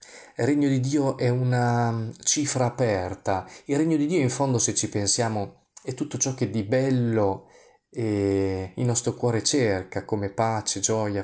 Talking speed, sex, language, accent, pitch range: 165 wpm, male, Italian, native, 110-140 Hz